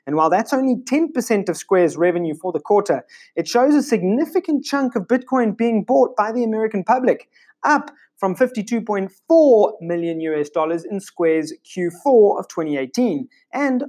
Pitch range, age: 170-235 Hz, 30-49